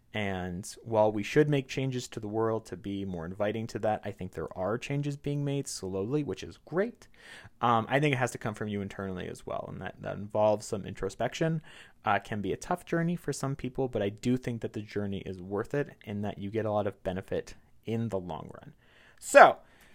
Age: 30-49